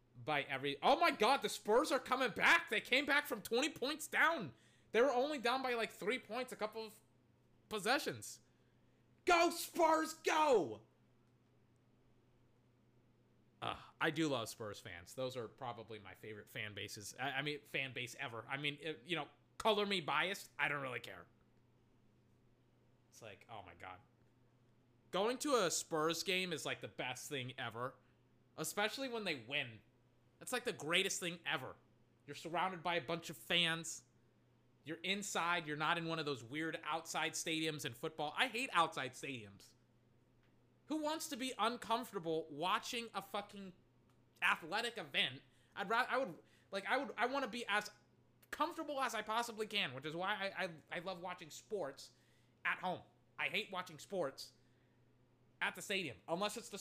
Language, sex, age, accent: English, male, 20-39, American